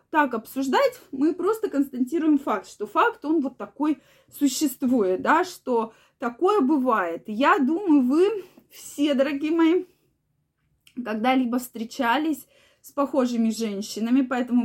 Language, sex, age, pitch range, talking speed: Russian, female, 20-39, 235-310 Hz, 115 wpm